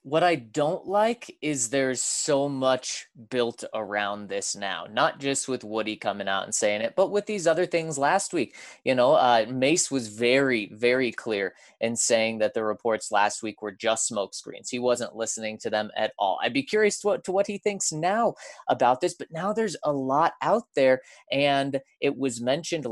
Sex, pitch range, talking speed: male, 110-170 Hz, 200 wpm